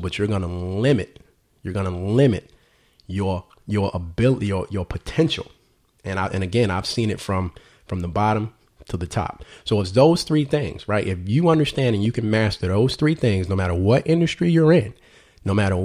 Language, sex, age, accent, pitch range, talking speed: English, male, 30-49, American, 95-125 Hz, 205 wpm